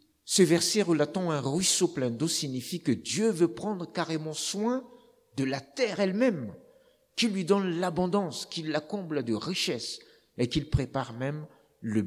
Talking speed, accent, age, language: 160 wpm, French, 50-69, French